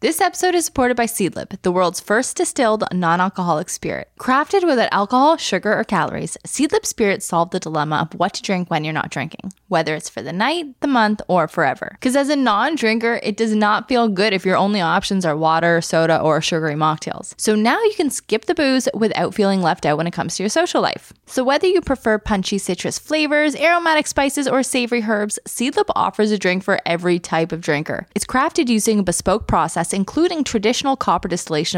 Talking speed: 205 wpm